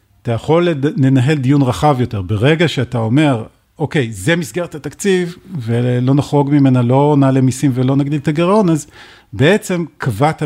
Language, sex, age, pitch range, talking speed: Hebrew, male, 50-69, 120-150 Hz, 150 wpm